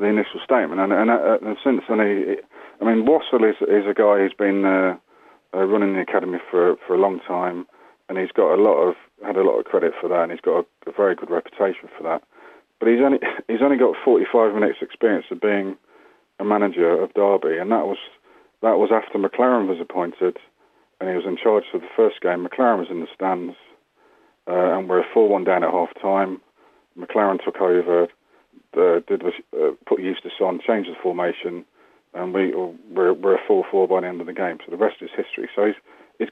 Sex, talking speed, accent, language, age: male, 215 wpm, British, English, 30-49